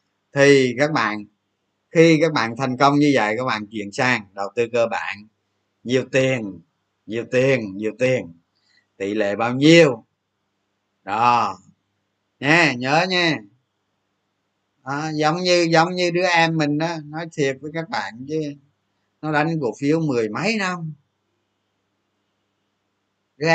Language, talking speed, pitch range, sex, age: Vietnamese, 140 wpm, 105-160 Hz, male, 20-39